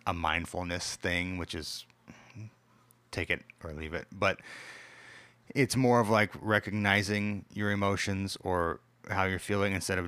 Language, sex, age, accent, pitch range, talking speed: English, male, 30-49, American, 85-100 Hz, 145 wpm